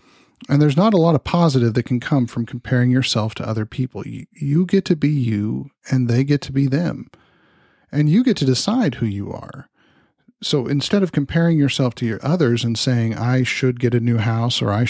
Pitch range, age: 120-150 Hz, 40-59